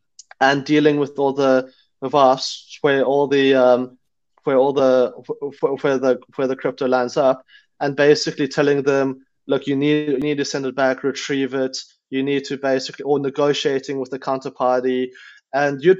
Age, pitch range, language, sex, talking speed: 30-49, 135-165 Hz, English, male, 170 wpm